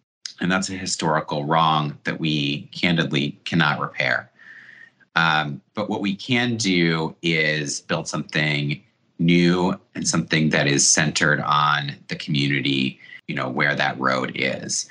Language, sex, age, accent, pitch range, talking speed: English, male, 30-49, American, 75-95 Hz, 135 wpm